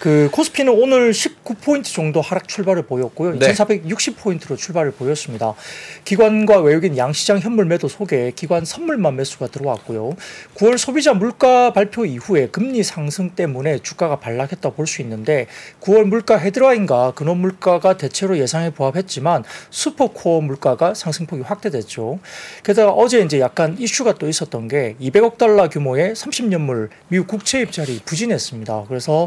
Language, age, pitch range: Korean, 40-59, 135-210 Hz